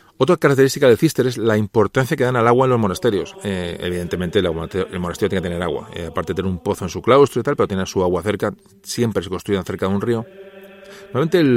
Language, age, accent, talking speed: Spanish, 40-59, Spanish, 250 wpm